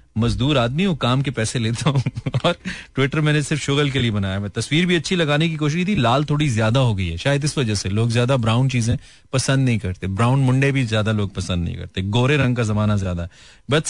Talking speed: 240 wpm